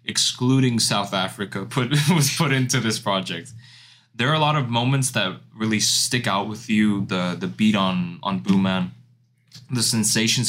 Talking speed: 165 wpm